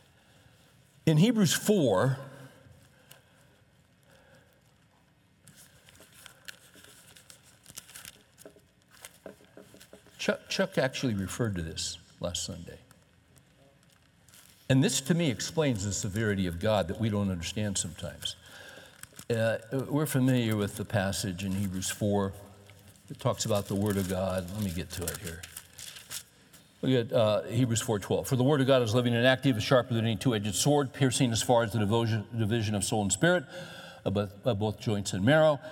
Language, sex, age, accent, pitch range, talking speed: English, male, 60-79, American, 100-130 Hz, 140 wpm